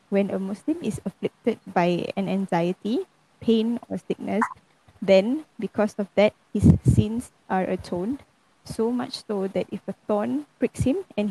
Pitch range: 190-225 Hz